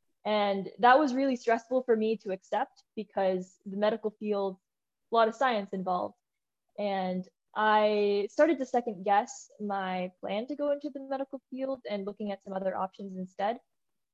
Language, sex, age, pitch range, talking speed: English, female, 10-29, 195-235 Hz, 165 wpm